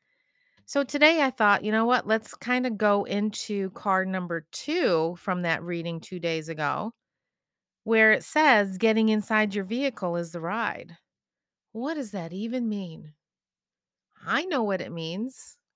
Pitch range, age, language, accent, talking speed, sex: 180-225 Hz, 30-49, English, American, 155 wpm, female